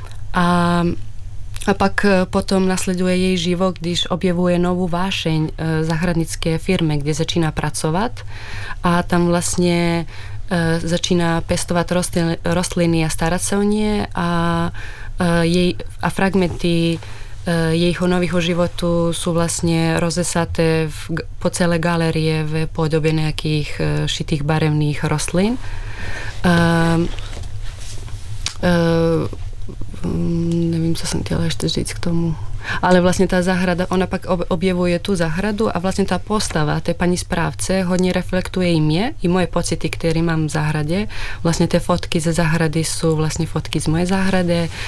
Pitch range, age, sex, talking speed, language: 155-180 Hz, 20-39, female, 135 wpm, Czech